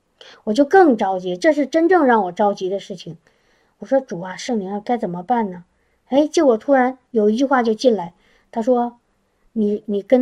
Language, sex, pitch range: Chinese, male, 215-280 Hz